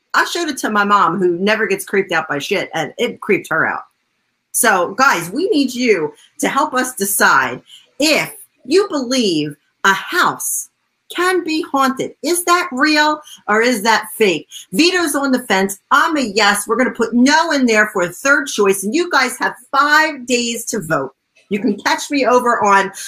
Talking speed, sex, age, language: 190 wpm, female, 40-59, English